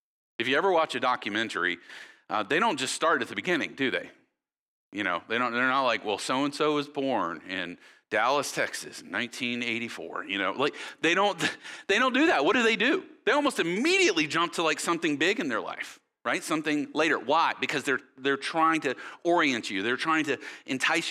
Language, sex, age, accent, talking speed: English, male, 40-59, American, 200 wpm